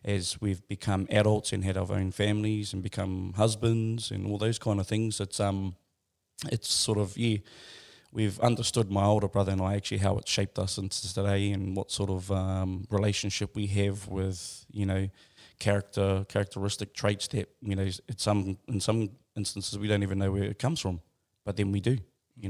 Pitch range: 100-110 Hz